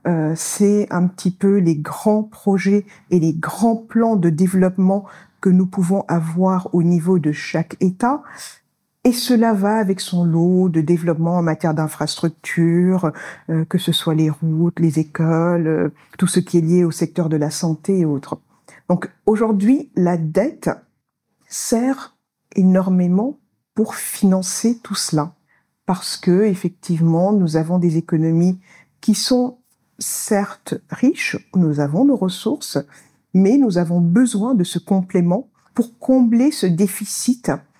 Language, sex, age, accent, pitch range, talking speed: French, female, 50-69, French, 170-220 Hz, 145 wpm